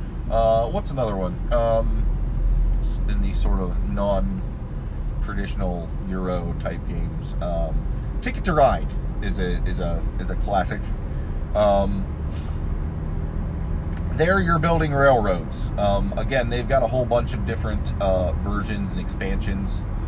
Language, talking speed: English, 125 wpm